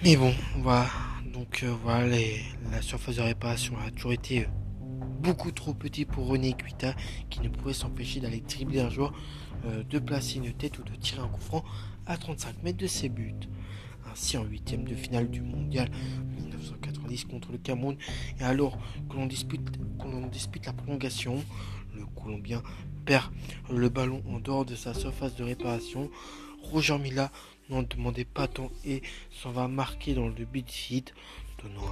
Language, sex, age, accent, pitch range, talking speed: French, male, 20-39, French, 105-130 Hz, 170 wpm